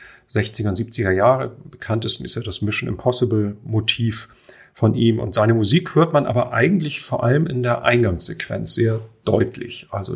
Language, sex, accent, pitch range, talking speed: German, male, German, 105-125 Hz, 155 wpm